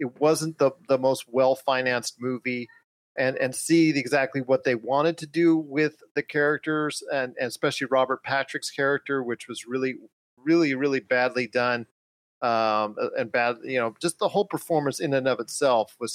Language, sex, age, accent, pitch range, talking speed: English, male, 40-59, American, 125-170 Hz, 180 wpm